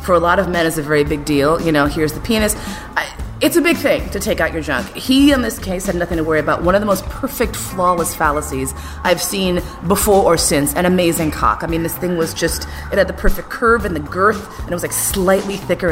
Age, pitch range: 30-49, 160-260 Hz